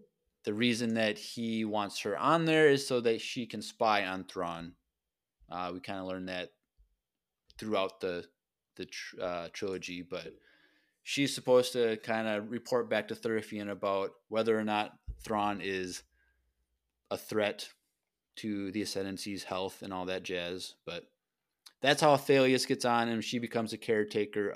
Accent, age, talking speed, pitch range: American, 20-39, 160 wpm, 95-120 Hz